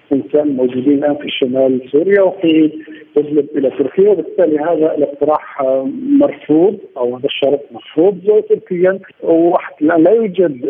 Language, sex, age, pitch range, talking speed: Arabic, male, 50-69, 135-165 Hz, 125 wpm